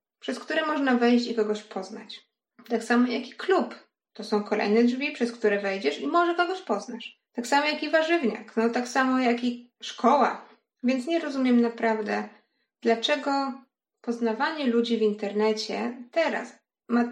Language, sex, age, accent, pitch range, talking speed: Polish, female, 20-39, native, 220-270 Hz, 160 wpm